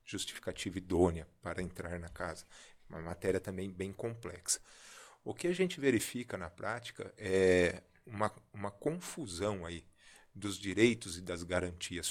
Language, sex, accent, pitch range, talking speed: Portuguese, male, Brazilian, 90-120 Hz, 140 wpm